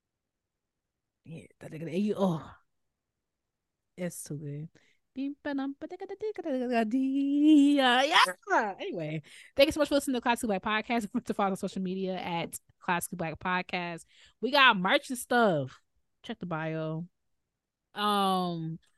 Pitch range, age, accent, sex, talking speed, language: 160-200 Hz, 20-39, American, female, 120 wpm, English